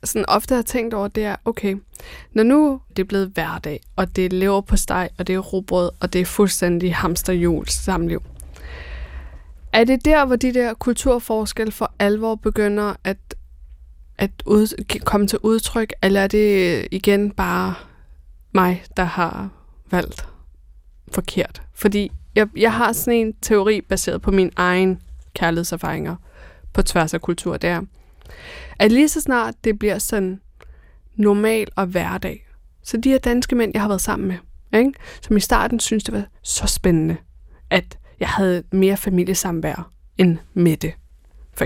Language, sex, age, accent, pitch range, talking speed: Danish, female, 20-39, native, 165-210 Hz, 155 wpm